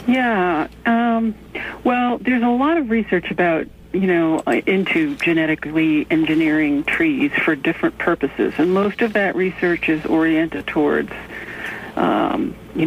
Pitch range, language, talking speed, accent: 160-235 Hz, English, 130 wpm, American